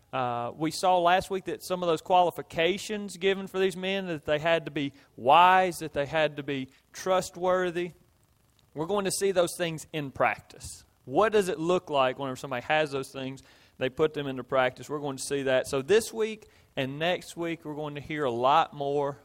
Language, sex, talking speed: English, male, 210 wpm